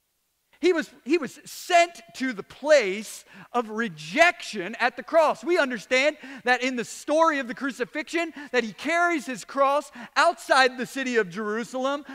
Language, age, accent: English, 40-59, American